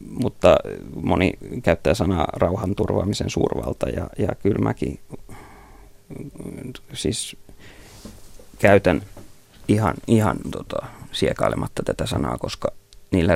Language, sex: Finnish, male